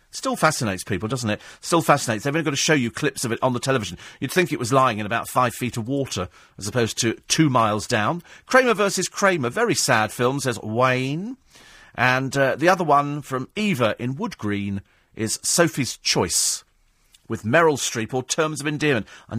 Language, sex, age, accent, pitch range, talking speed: English, male, 40-59, British, 105-150 Hz, 200 wpm